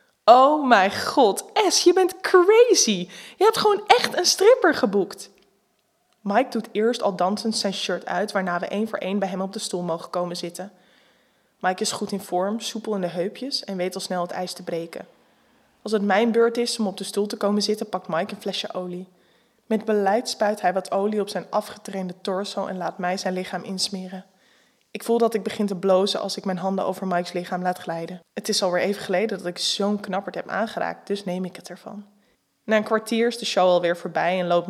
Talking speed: 220 wpm